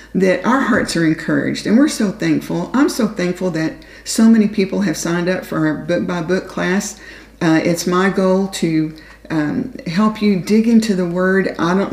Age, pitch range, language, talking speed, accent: 50-69, 170-205 Hz, English, 195 wpm, American